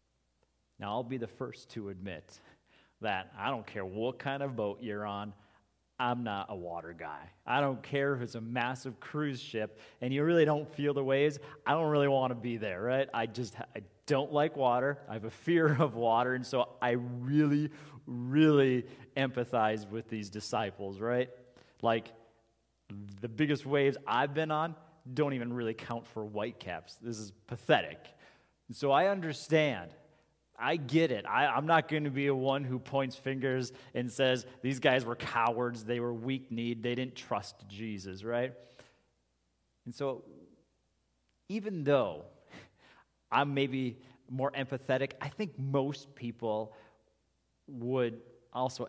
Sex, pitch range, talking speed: male, 115-140 Hz, 155 wpm